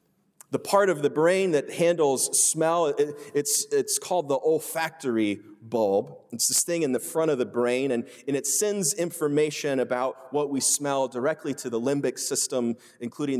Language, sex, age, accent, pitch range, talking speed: English, male, 30-49, American, 125-165 Hz, 175 wpm